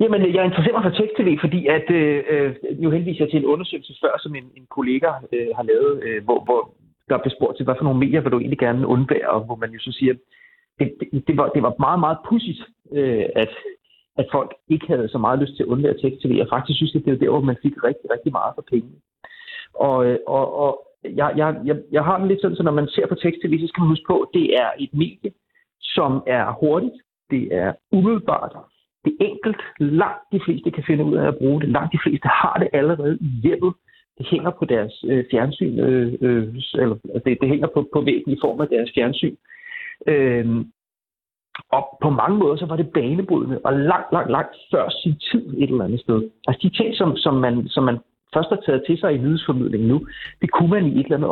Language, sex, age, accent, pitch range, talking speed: Danish, male, 30-49, native, 130-185 Hz, 230 wpm